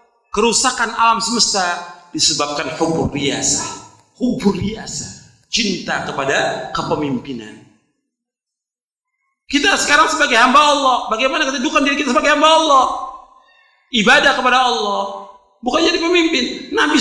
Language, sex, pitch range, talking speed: Indonesian, male, 185-305 Hz, 105 wpm